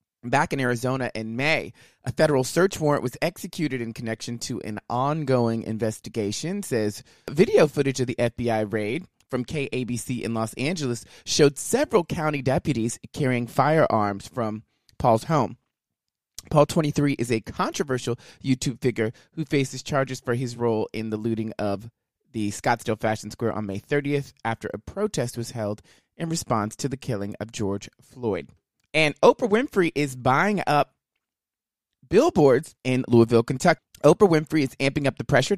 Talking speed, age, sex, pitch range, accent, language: 155 wpm, 30-49, male, 115-145 Hz, American, English